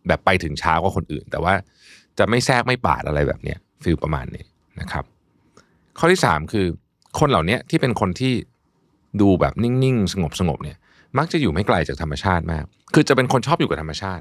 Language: Thai